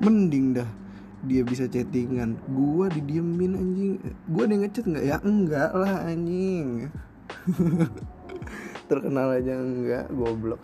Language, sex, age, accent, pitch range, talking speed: Indonesian, male, 20-39, native, 135-205 Hz, 115 wpm